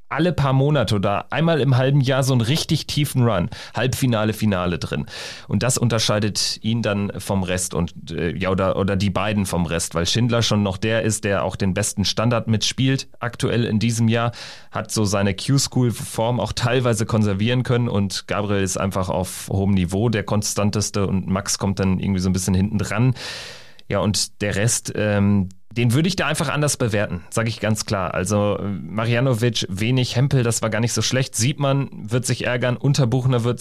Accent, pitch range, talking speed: German, 100-135 Hz, 190 wpm